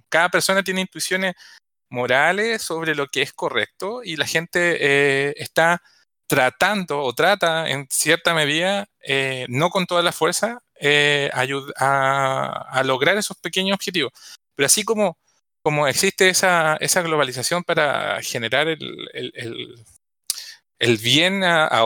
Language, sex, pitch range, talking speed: Spanish, male, 145-190 Hz, 140 wpm